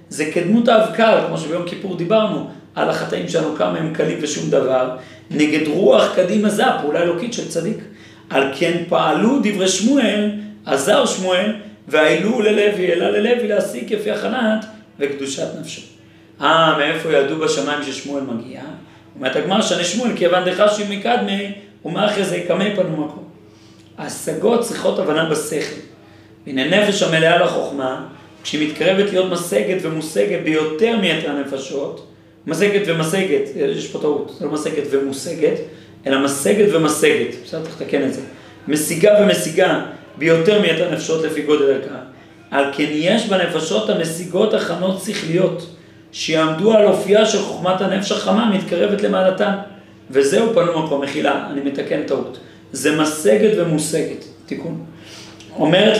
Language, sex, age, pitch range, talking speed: Hebrew, male, 40-59, 155-205 Hz, 135 wpm